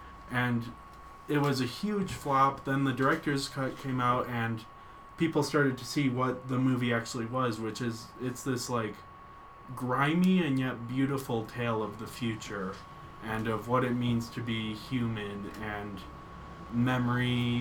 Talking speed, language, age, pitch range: 155 wpm, English, 20-39, 110-130 Hz